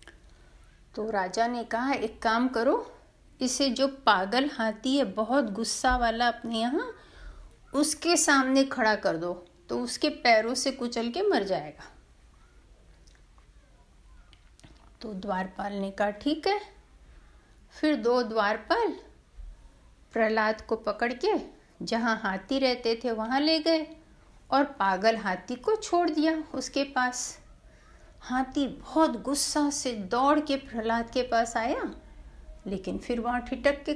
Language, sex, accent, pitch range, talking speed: Hindi, female, native, 220-305 Hz, 125 wpm